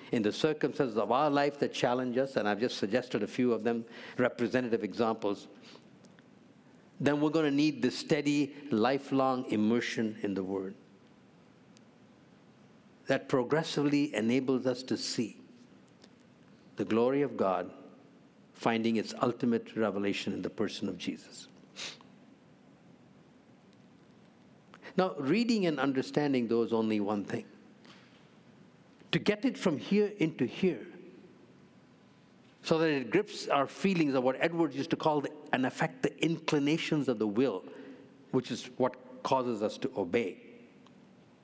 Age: 60-79